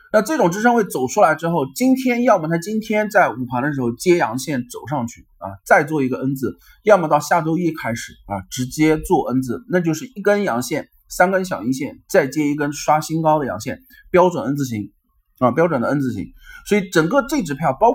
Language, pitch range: Chinese, 130-205 Hz